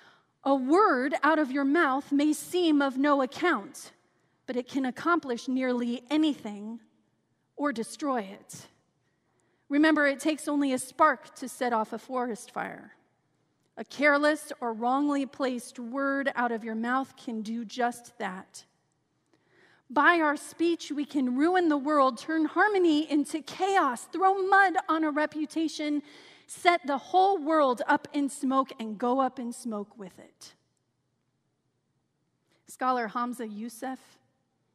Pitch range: 225-295 Hz